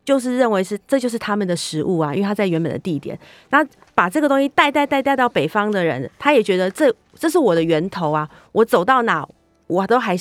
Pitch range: 175-230 Hz